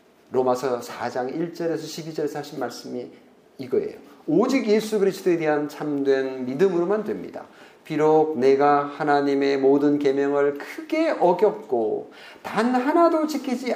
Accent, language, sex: native, Korean, male